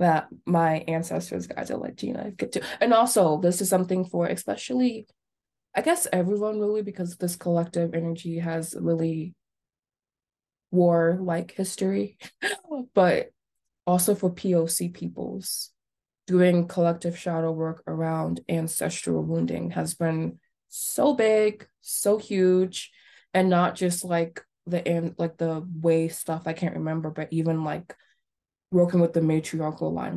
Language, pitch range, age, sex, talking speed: English, 160-185 Hz, 20-39, female, 135 wpm